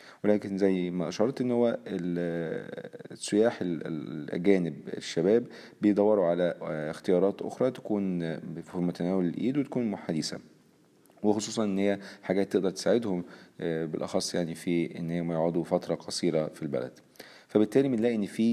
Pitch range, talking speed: 85-100 Hz, 125 wpm